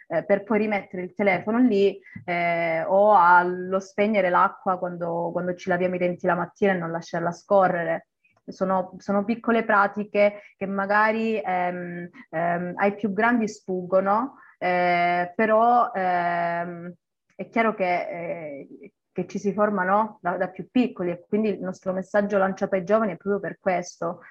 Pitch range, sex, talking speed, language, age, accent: 175-205 Hz, female, 155 wpm, Italian, 20-39, native